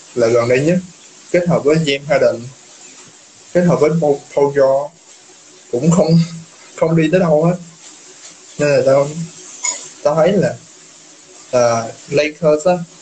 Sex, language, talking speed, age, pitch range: male, Vietnamese, 140 wpm, 20-39, 135-175 Hz